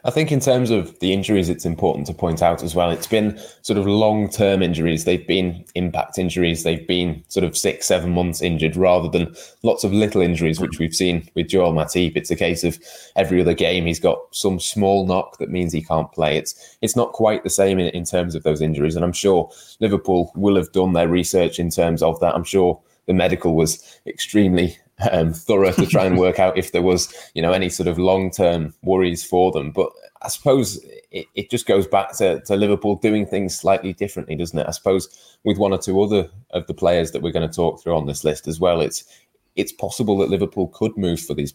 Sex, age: male, 20-39